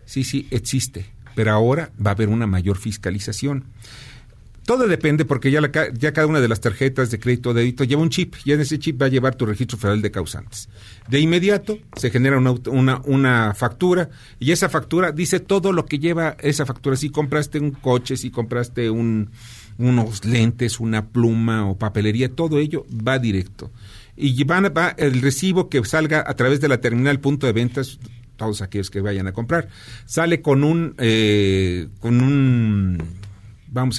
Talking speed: 185 wpm